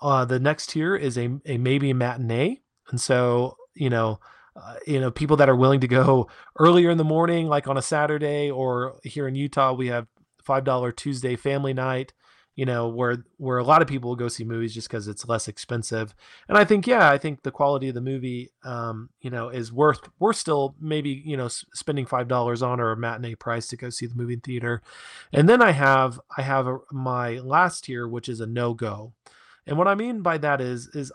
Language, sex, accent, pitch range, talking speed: English, male, American, 120-140 Hz, 220 wpm